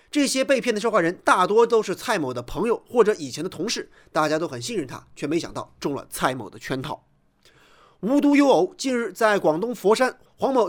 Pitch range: 165-260 Hz